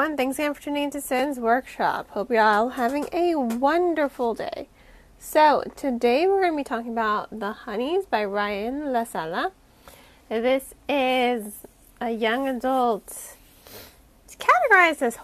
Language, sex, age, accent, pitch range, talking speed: English, female, 30-49, American, 230-295 Hz, 140 wpm